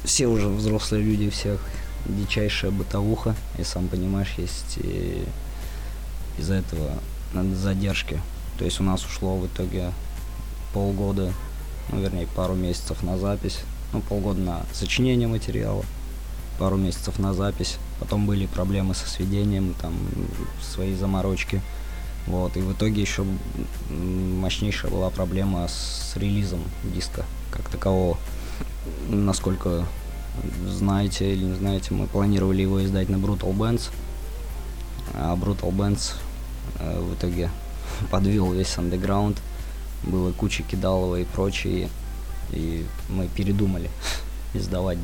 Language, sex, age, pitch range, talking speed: Russian, male, 20-39, 85-100 Hz, 115 wpm